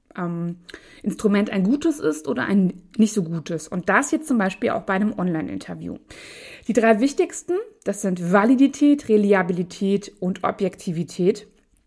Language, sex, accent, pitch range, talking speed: German, female, German, 190-245 Hz, 140 wpm